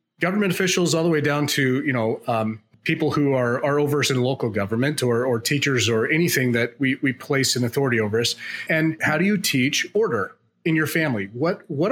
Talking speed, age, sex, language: 215 wpm, 30-49, male, English